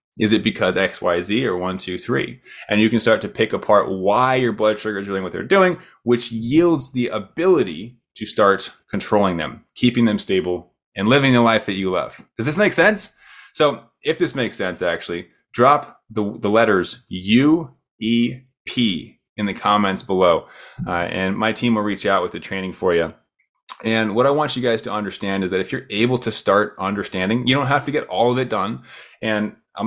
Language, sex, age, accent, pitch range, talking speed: English, male, 20-39, American, 100-130 Hz, 205 wpm